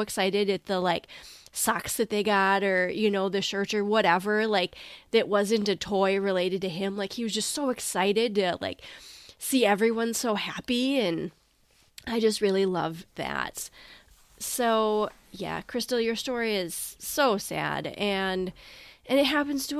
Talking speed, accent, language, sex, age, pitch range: 165 wpm, American, English, female, 20-39, 180-220 Hz